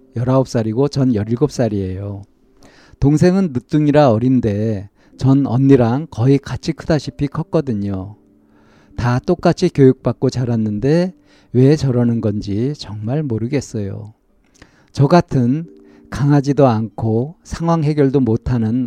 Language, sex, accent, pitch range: Korean, male, native, 105-140 Hz